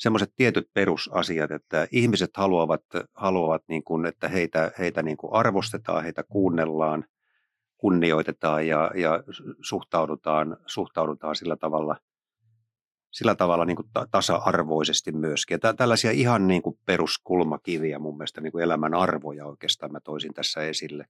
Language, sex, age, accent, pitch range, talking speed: Finnish, male, 50-69, native, 80-105 Hz, 135 wpm